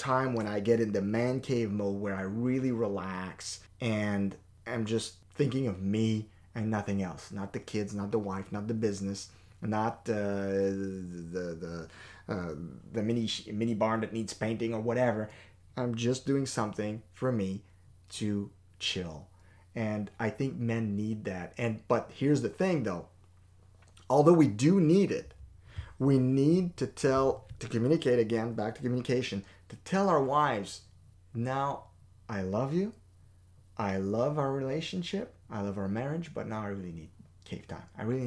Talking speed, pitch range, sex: 165 wpm, 95-125 Hz, male